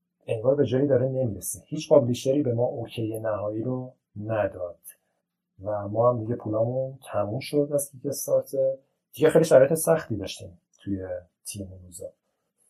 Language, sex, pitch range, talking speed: Persian, male, 105-145 Hz, 145 wpm